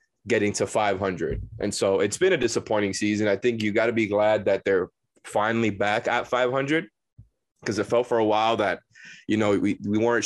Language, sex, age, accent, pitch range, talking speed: English, male, 20-39, American, 105-120 Hz, 205 wpm